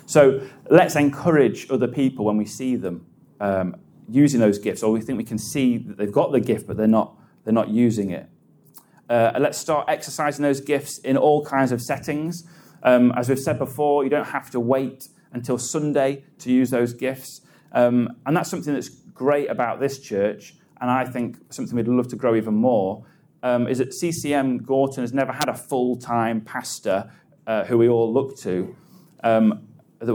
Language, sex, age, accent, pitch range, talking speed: English, male, 30-49, British, 115-140 Hz, 185 wpm